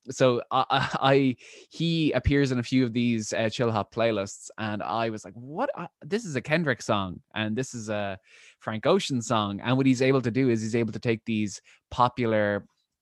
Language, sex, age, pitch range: English, male, 20-39, 105-120 Hz